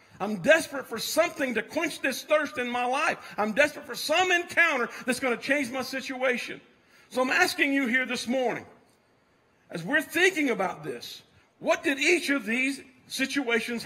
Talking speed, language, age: 175 wpm, English, 50-69